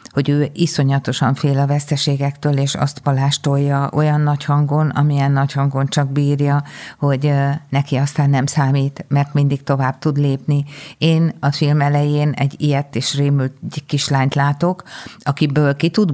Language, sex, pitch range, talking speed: Hungarian, female, 140-155 Hz, 150 wpm